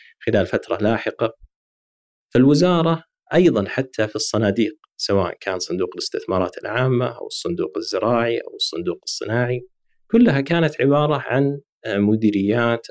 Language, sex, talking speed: Arabic, male, 110 wpm